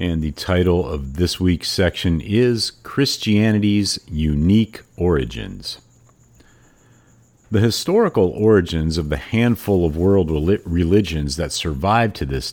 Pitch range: 80-115 Hz